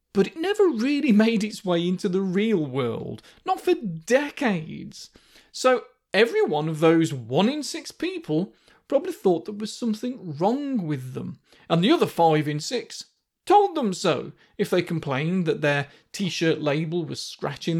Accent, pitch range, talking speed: British, 175-245 Hz, 165 wpm